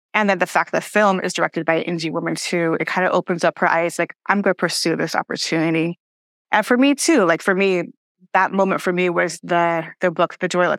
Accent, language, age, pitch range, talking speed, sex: American, English, 20-39, 165-190 Hz, 250 wpm, female